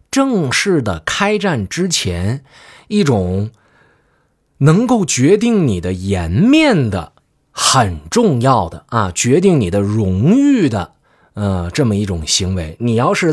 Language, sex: Chinese, male